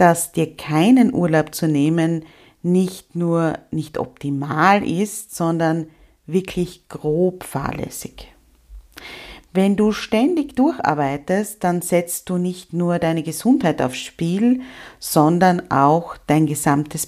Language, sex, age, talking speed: German, female, 40-59, 110 wpm